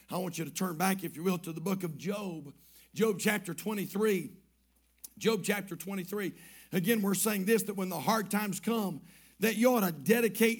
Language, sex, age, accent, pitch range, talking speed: English, male, 50-69, American, 195-245 Hz, 200 wpm